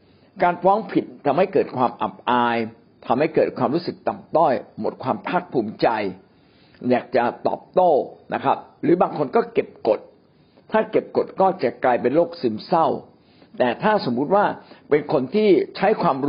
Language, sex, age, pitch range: Thai, male, 60-79, 120-190 Hz